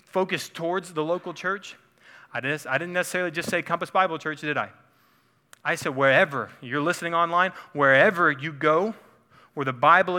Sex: male